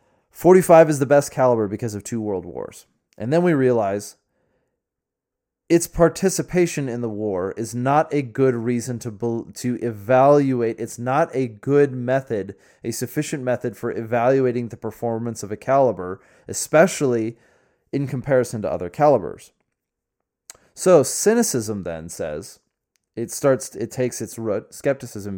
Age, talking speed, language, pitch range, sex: 20-39, 140 wpm, English, 115-145 Hz, male